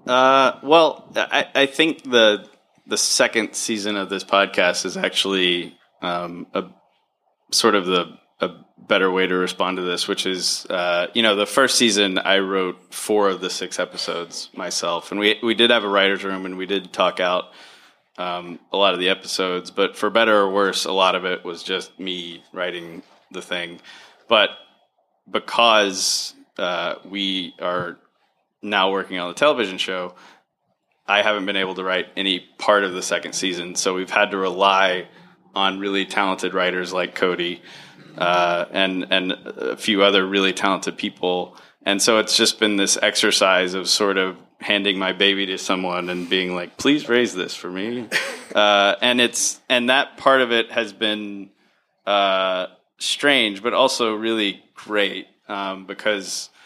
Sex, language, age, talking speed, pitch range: male, English, 20-39, 170 wpm, 90-105 Hz